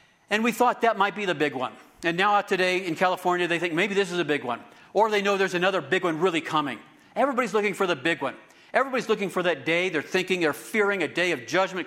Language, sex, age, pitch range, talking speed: English, male, 50-69, 155-195 Hz, 260 wpm